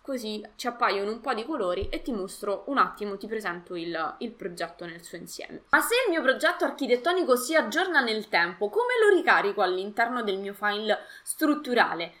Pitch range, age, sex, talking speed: 200-260 Hz, 20-39, female, 185 wpm